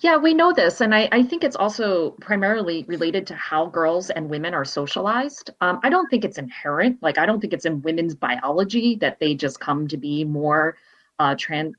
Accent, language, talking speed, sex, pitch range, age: American, English, 215 wpm, female, 160-225 Hz, 30-49